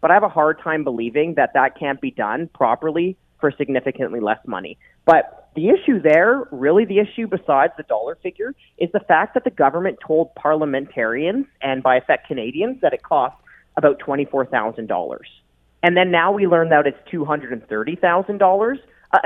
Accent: American